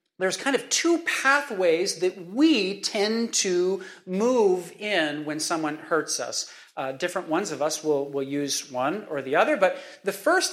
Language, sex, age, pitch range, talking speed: English, male, 40-59, 160-250 Hz, 170 wpm